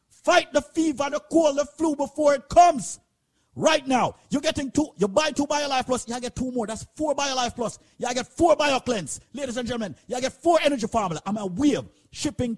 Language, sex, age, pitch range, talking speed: English, male, 50-69, 225-300 Hz, 230 wpm